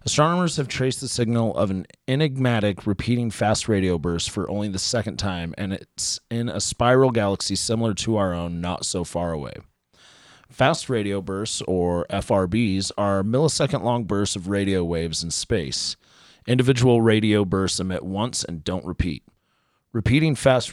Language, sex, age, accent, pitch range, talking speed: English, male, 30-49, American, 90-115 Hz, 160 wpm